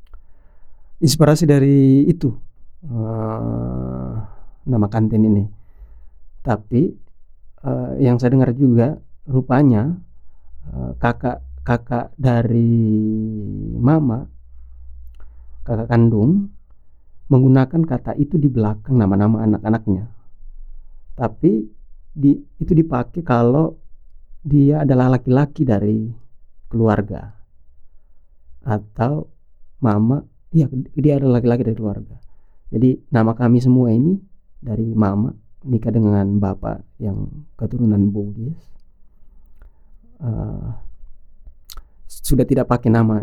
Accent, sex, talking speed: native, male, 90 wpm